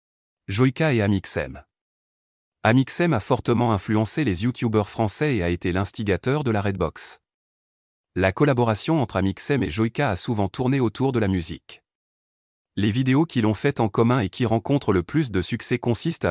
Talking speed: 165 wpm